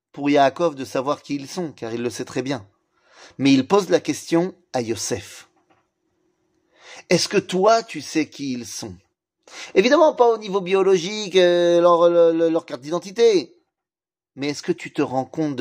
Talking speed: 175 wpm